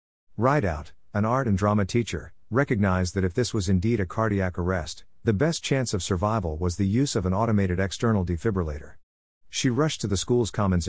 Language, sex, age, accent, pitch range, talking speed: English, male, 50-69, American, 90-115 Hz, 185 wpm